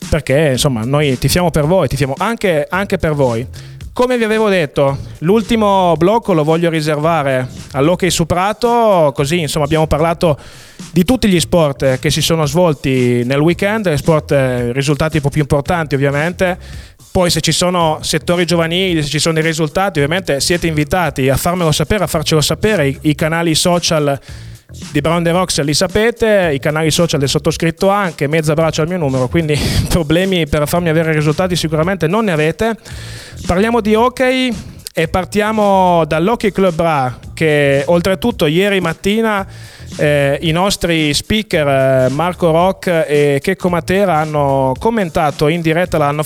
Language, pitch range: Italian, 150-185 Hz